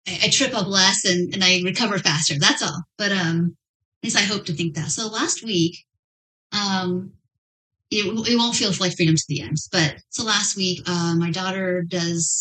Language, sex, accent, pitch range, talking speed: English, female, American, 165-205 Hz, 200 wpm